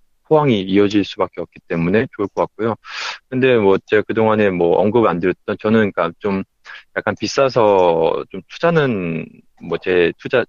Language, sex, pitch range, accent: Korean, male, 100-140 Hz, native